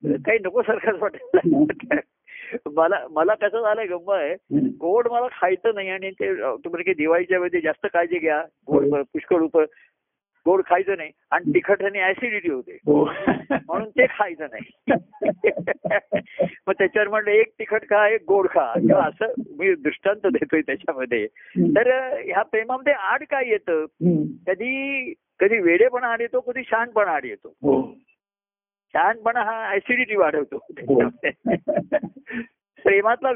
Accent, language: native, Marathi